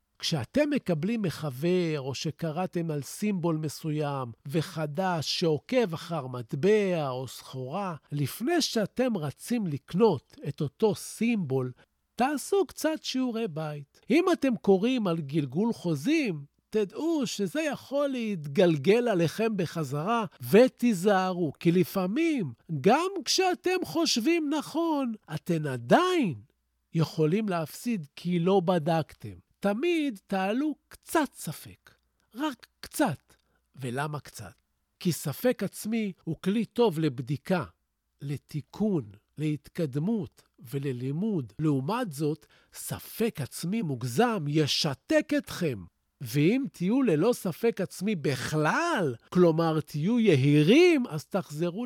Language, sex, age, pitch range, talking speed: Hebrew, male, 50-69, 150-230 Hz, 100 wpm